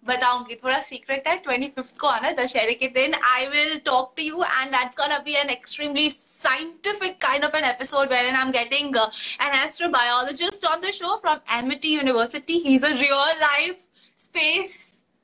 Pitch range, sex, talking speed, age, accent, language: 250-300 Hz, female, 60 wpm, 20-39, native, Hindi